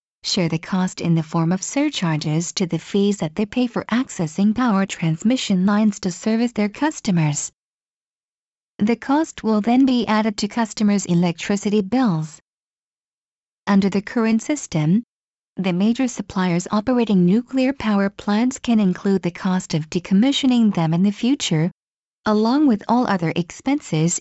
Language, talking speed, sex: English, 145 wpm, female